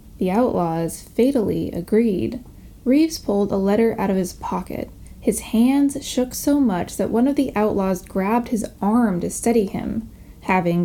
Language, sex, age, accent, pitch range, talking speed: English, female, 10-29, American, 195-255 Hz, 160 wpm